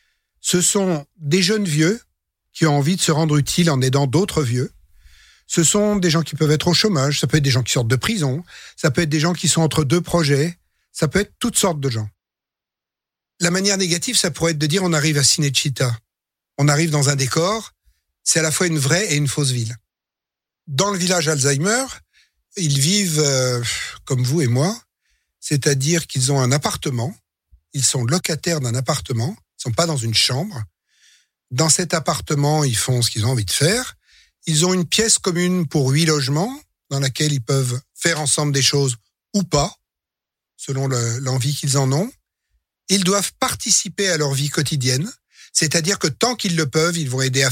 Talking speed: 195 wpm